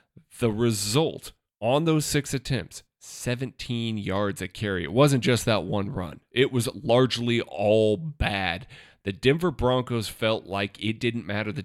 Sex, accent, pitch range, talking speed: male, American, 100-125 Hz, 155 wpm